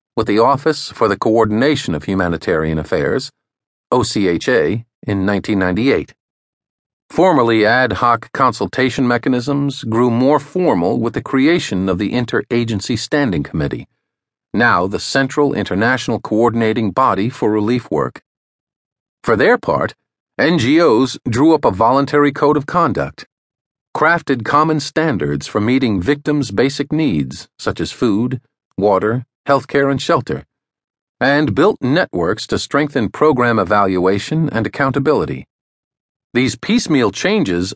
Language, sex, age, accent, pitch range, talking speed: English, male, 50-69, American, 105-140 Hz, 120 wpm